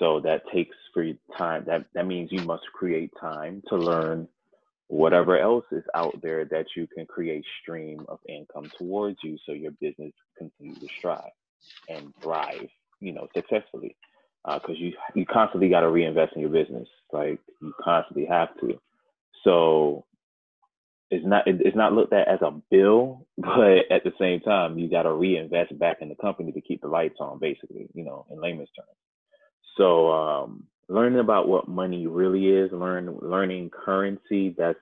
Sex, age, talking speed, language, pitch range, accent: male, 20-39, 180 wpm, English, 80-95 Hz, American